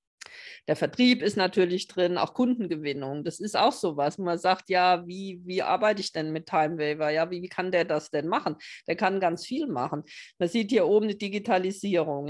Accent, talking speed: German, 200 wpm